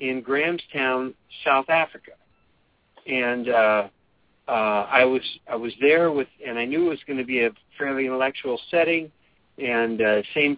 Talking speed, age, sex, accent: 160 wpm, 50-69, male, American